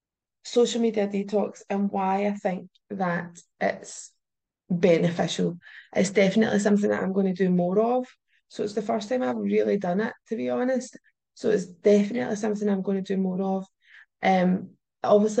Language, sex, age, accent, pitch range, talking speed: English, female, 20-39, British, 180-220 Hz, 170 wpm